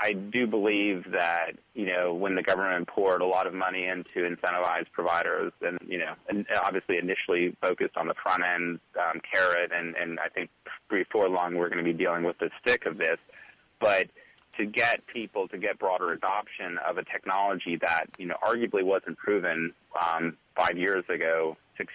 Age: 30-49